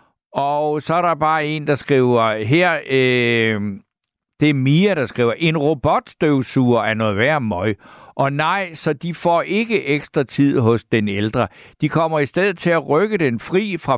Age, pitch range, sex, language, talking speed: 60-79, 110-150 Hz, male, Danish, 180 wpm